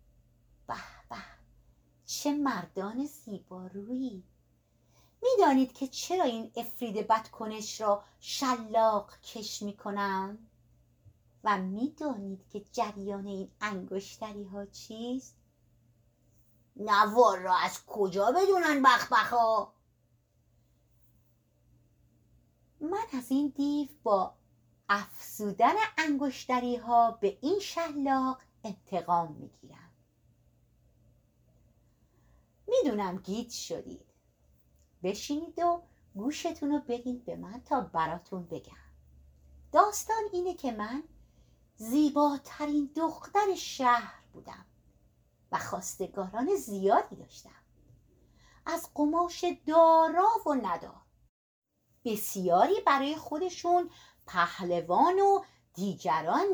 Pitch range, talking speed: 180-290 Hz, 85 wpm